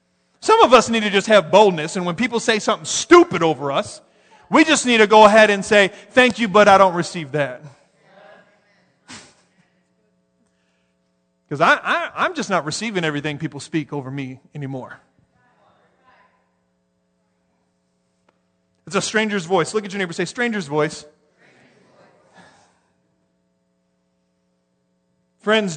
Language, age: English, 40-59